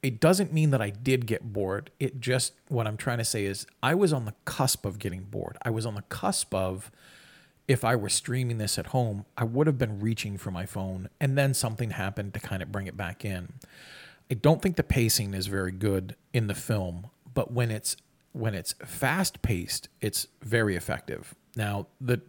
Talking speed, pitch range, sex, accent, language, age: 215 wpm, 100-130 Hz, male, American, English, 40-59